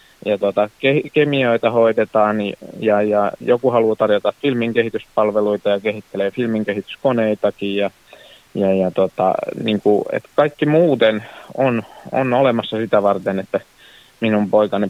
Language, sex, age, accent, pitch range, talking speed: Finnish, male, 30-49, native, 100-120 Hz, 115 wpm